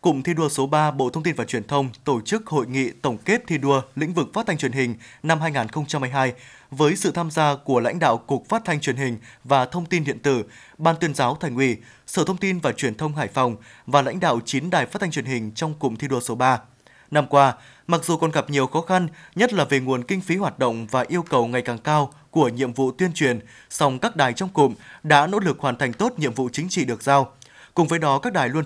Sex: male